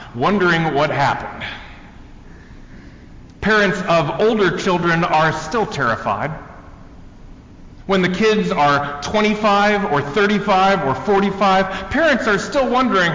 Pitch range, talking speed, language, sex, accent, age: 140-195 Hz, 105 wpm, English, male, American, 40-59